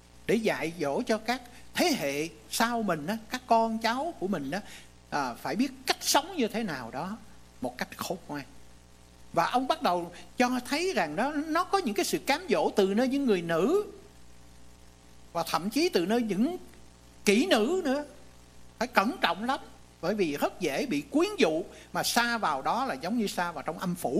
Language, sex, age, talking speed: English, male, 60-79, 200 wpm